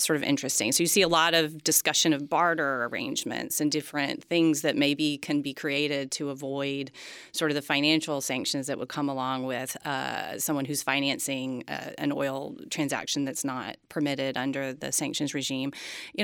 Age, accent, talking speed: 30-49, American, 175 wpm